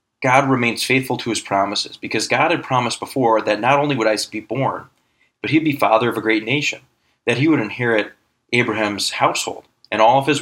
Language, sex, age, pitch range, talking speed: English, male, 30-49, 110-135 Hz, 205 wpm